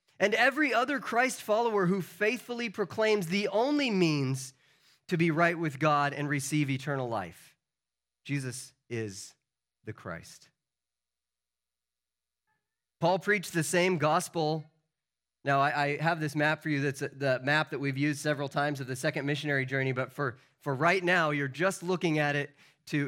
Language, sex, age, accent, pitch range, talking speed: English, male, 30-49, American, 140-195 Hz, 155 wpm